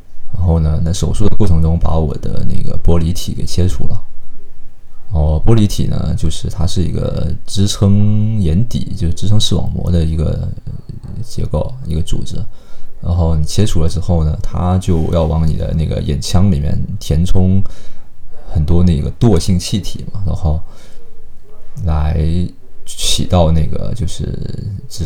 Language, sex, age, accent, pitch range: Chinese, male, 20-39, native, 80-105 Hz